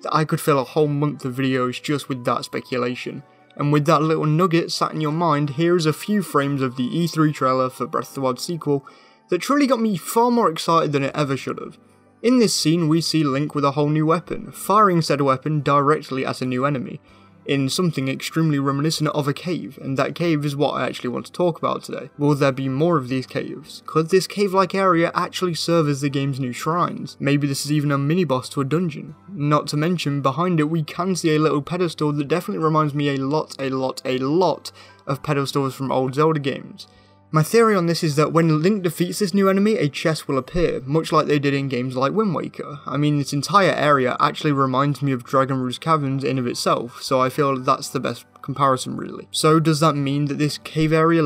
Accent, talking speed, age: British, 230 wpm, 20-39